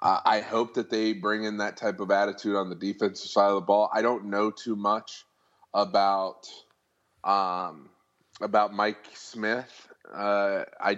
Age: 20-39